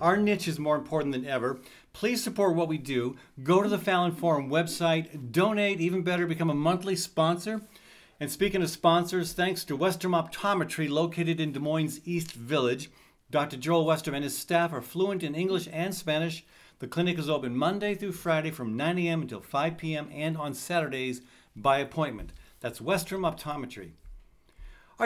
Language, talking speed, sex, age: English, 175 wpm, male, 50-69